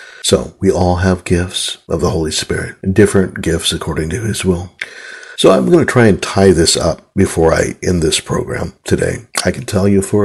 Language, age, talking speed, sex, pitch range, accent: English, 60-79, 210 wpm, male, 85-100 Hz, American